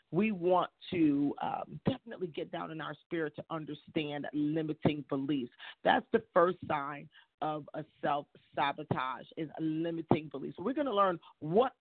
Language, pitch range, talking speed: English, 150-185 Hz, 145 wpm